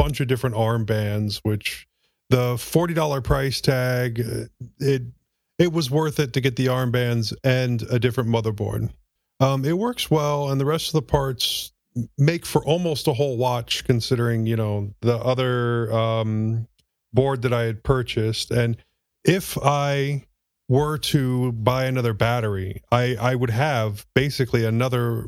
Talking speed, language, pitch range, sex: 150 wpm, English, 115-140 Hz, male